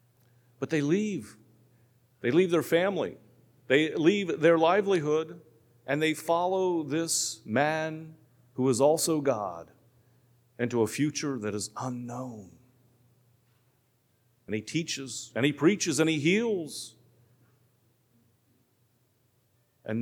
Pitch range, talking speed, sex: 120-135 Hz, 110 wpm, male